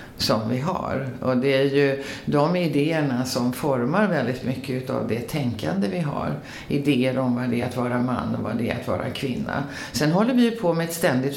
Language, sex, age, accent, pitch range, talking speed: Swedish, female, 50-69, native, 125-160 Hz, 215 wpm